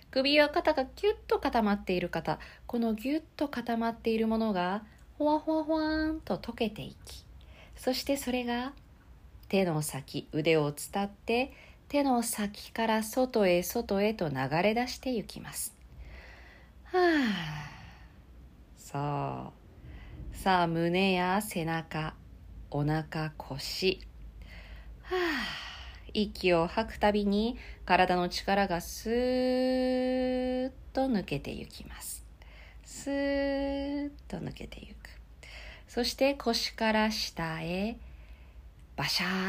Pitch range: 155-245 Hz